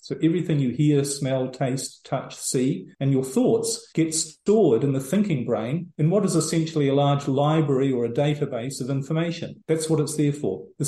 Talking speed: 195 wpm